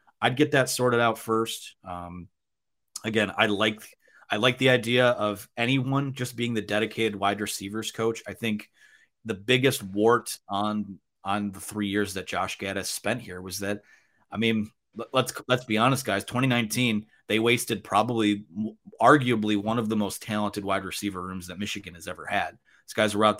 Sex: male